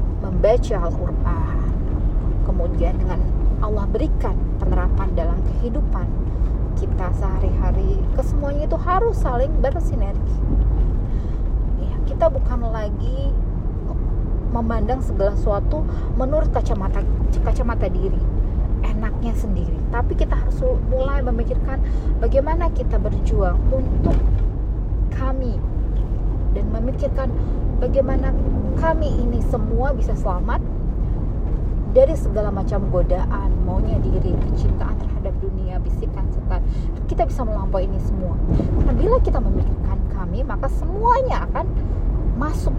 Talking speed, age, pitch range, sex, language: 100 wpm, 30-49, 85-100 Hz, female, Indonesian